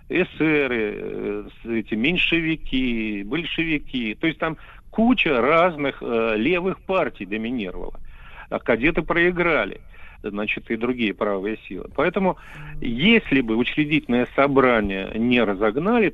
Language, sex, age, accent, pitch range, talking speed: Russian, male, 40-59, native, 110-150 Hz, 105 wpm